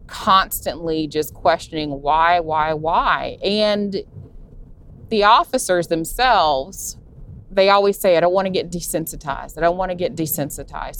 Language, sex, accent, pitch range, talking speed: English, female, American, 145-175 Hz, 135 wpm